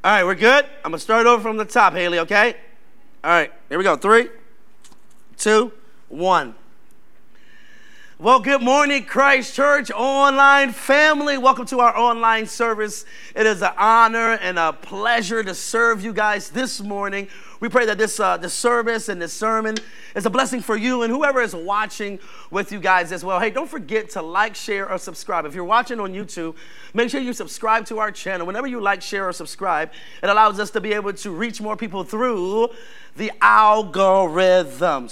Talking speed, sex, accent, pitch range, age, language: 185 wpm, male, American, 195-250 Hz, 30-49, English